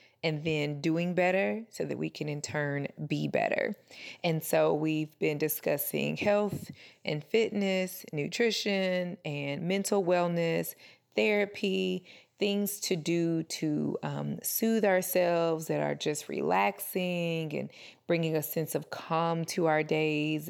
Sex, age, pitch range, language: female, 20-39, 155-195 Hz, English